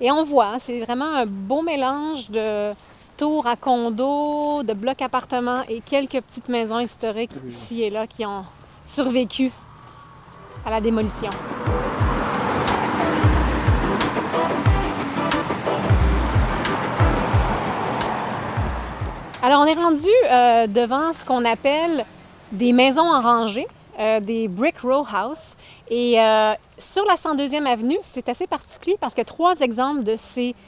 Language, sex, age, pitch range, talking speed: French, female, 30-49, 225-280 Hz, 120 wpm